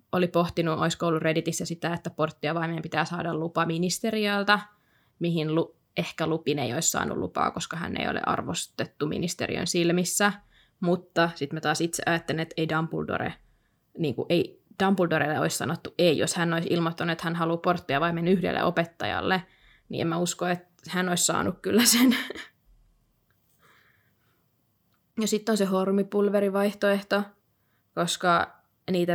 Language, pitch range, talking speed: Finnish, 160-190 Hz, 145 wpm